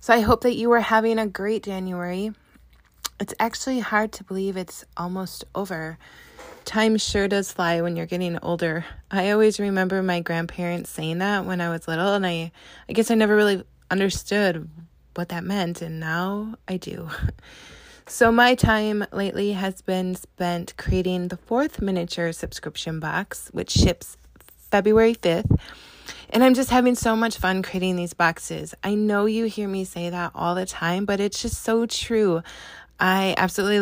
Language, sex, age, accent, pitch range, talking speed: English, female, 20-39, American, 175-210 Hz, 170 wpm